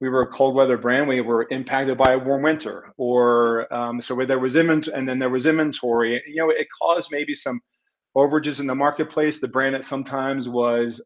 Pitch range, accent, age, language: 125-150 Hz, American, 40-59, English